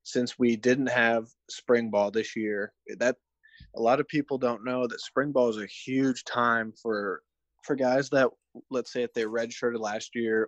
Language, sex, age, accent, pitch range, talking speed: English, male, 20-39, American, 105-125 Hz, 190 wpm